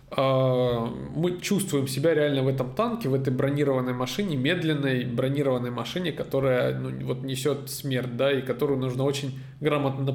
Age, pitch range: 20-39, 130-170 Hz